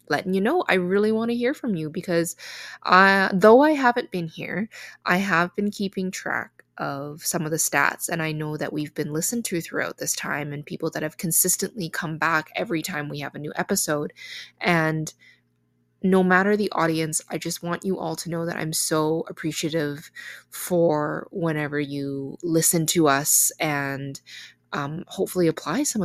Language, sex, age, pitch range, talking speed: English, female, 20-39, 160-210 Hz, 180 wpm